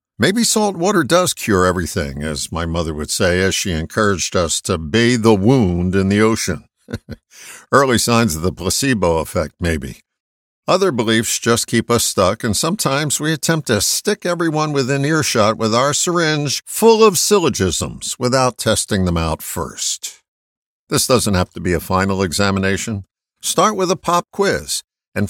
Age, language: 60-79, English